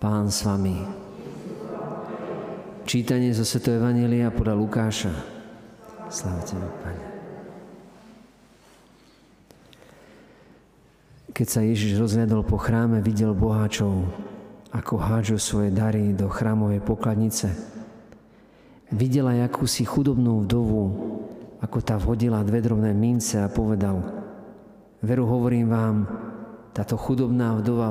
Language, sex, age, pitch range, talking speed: Slovak, male, 50-69, 100-120 Hz, 90 wpm